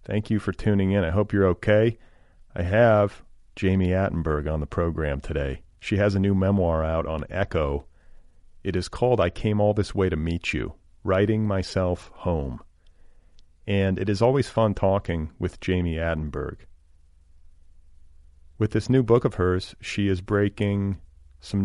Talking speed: 160 wpm